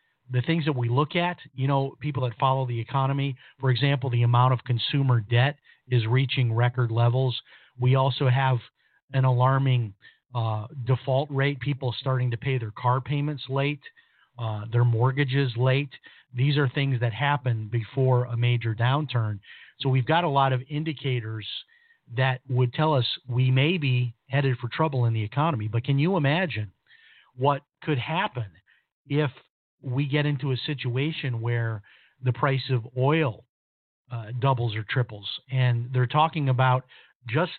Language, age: English, 40-59